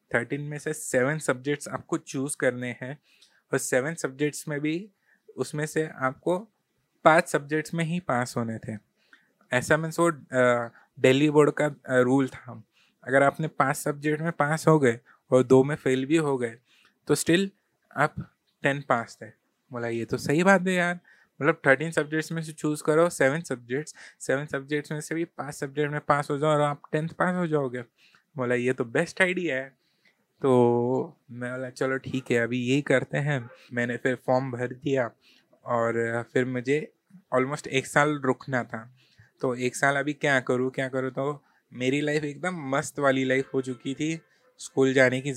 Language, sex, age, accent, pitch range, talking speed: Hindi, male, 20-39, native, 125-150 Hz, 180 wpm